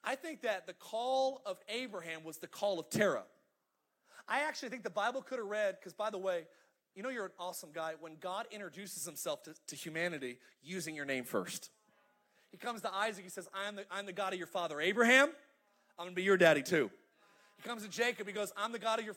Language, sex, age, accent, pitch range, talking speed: English, male, 30-49, American, 190-250 Hz, 230 wpm